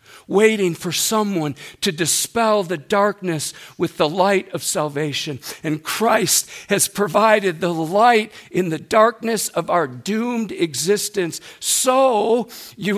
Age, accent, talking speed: 50-69, American, 125 wpm